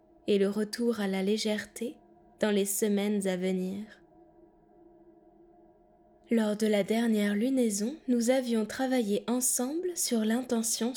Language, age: French, 20-39